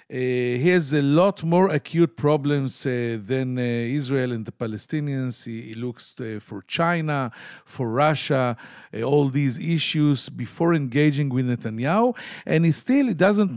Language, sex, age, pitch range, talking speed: English, male, 50-69, 120-170 Hz, 155 wpm